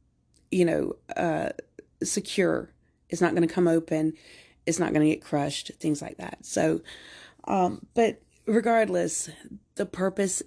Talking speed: 145 wpm